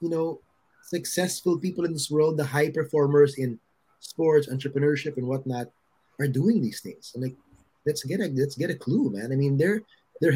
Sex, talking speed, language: male, 190 wpm, Filipino